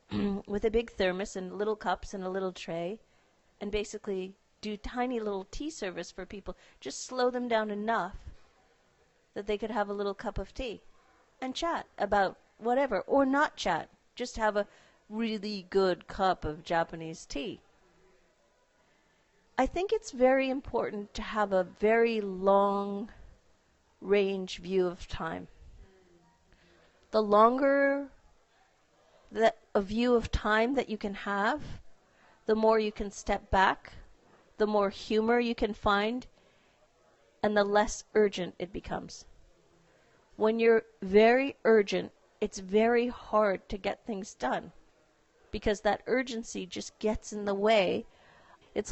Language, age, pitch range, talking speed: English, 50-69, 195-225 Hz, 140 wpm